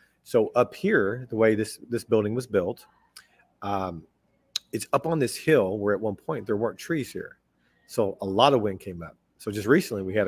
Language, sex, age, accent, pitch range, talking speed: English, male, 40-59, American, 100-125 Hz, 210 wpm